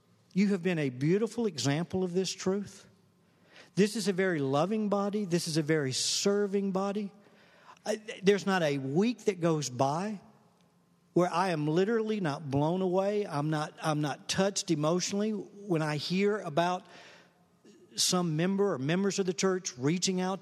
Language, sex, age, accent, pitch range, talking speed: English, male, 50-69, American, 150-195 Hz, 155 wpm